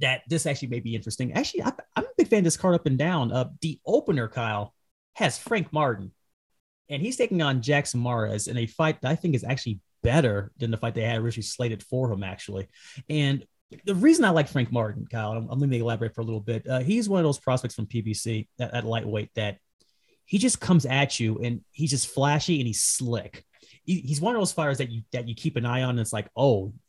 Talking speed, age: 240 wpm, 30-49